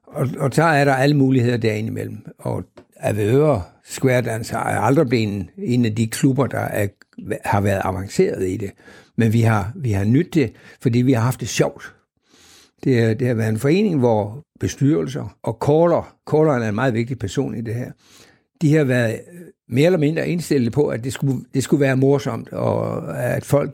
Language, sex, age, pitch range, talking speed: Danish, male, 60-79, 115-145 Hz, 200 wpm